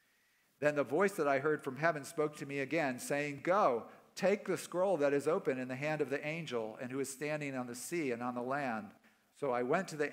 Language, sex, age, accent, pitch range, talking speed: English, male, 50-69, American, 120-155 Hz, 250 wpm